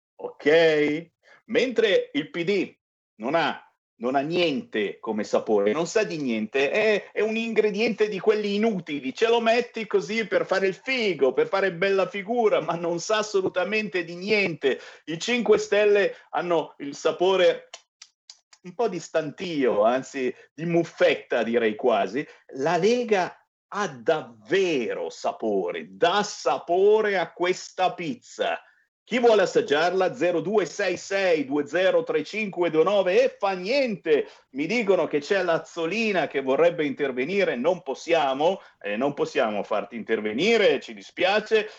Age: 50-69